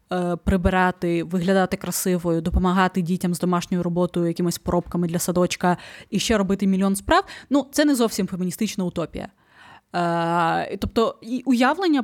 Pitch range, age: 180-220 Hz, 20-39